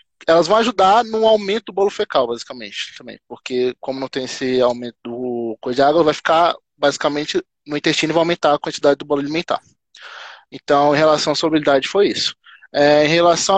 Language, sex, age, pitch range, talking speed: Portuguese, male, 20-39, 135-180 Hz, 190 wpm